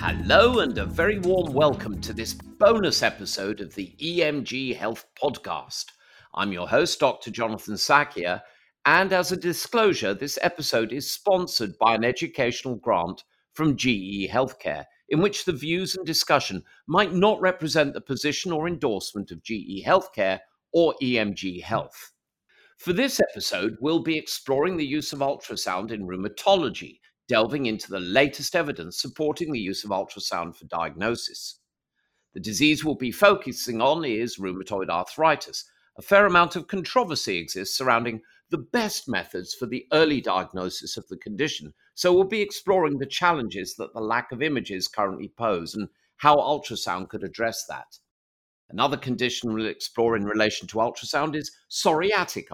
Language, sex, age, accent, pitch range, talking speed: English, male, 50-69, British, 105-160 Hz, 155 wpm